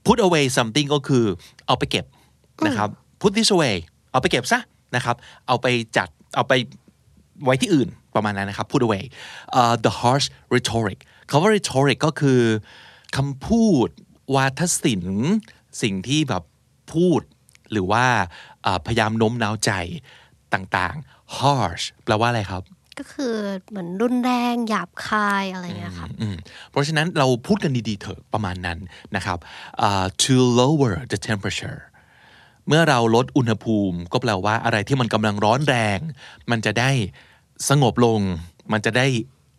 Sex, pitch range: male, 105-145 Hz